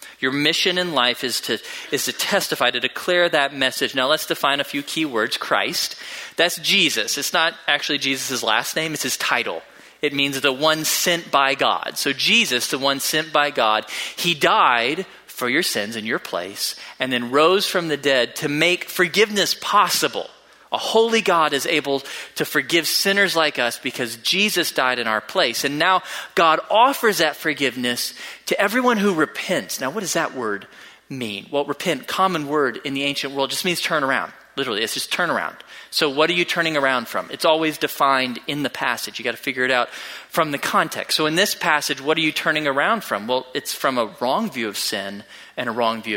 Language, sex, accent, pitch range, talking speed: English, male, American, 135-175 Hz, 205 wpm